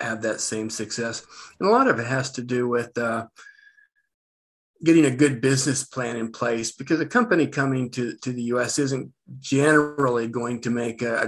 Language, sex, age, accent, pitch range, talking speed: English, male, 50-69, American, 115-130 Hz, 190 wpm